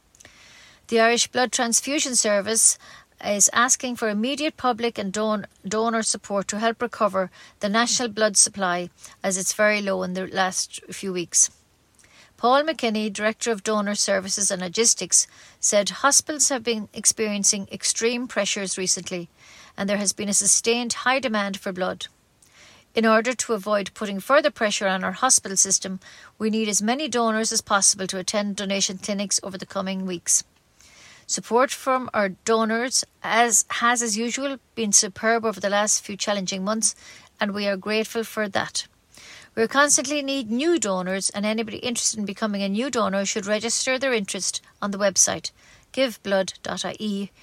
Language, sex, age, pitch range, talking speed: English, female, 50-69, 200-235 Hz, 155 wpm